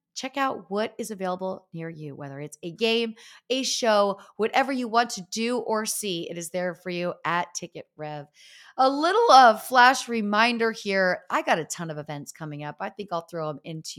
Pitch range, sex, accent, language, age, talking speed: 175-225 Hz, female, American, English, 30-49, 200 wpm